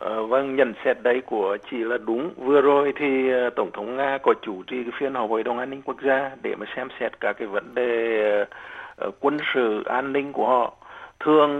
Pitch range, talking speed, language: 120-145 Hz, 210 wpm, Vietnamese